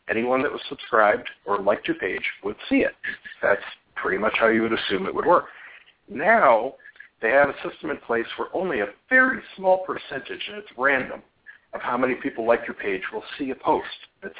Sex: male